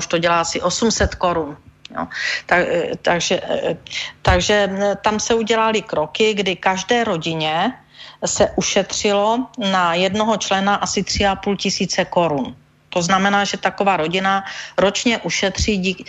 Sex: female